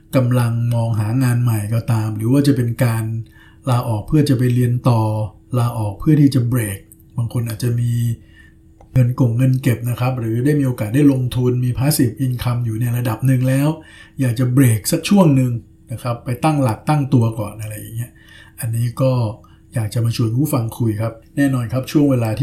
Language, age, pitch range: Thai, 60-79, 110-130 Hz